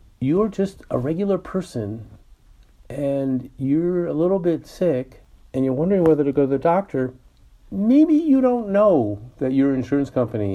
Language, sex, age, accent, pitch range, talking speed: English, male, 50-69, American, 120-165 Hz, 160 wpm